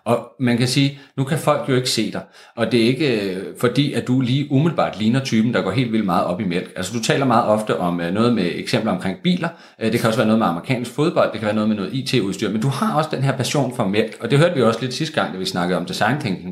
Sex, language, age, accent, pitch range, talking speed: male, Danish, 30-49, native, 105-145 Hz, 295 wpm